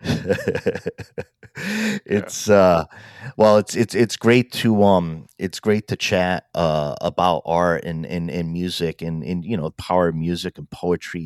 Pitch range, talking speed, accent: 80-90 Hz, 155 wpm, American